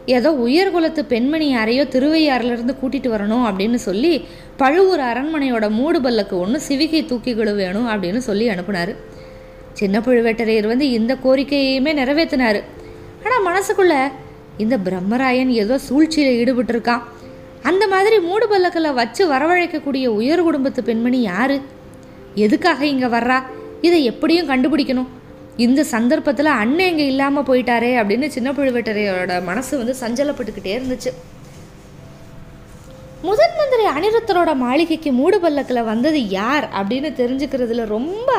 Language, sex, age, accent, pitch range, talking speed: Tamil, female, 20-39, native, 230-300 Hz, 115 wpm